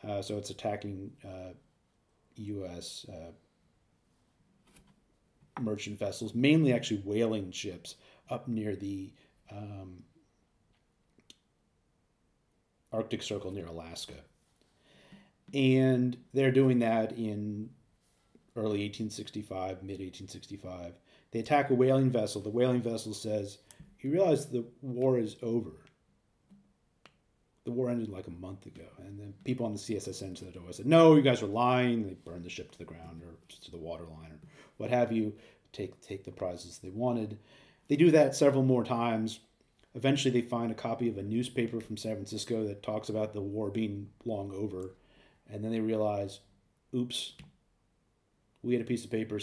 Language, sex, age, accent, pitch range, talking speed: English, male, 40-59, American, 100-125 Hz, 150 wpm